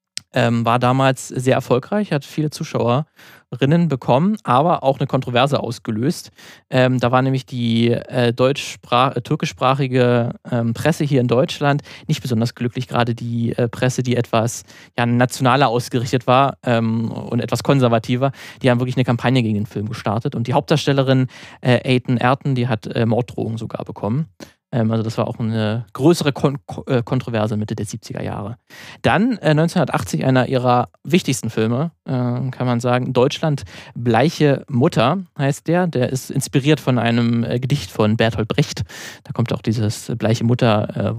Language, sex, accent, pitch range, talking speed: German, male, German, 115-140 Hz, 155 wpm